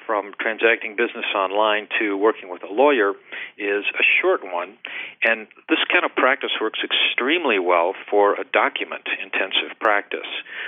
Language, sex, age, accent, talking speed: English, male, 50-69, American, 140 wpm